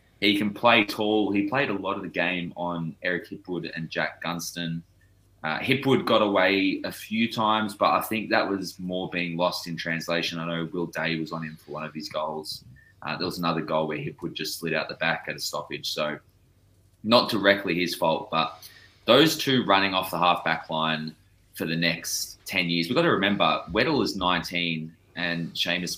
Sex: male